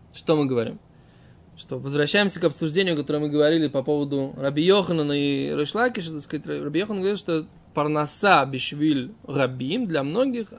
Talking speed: 140 wpm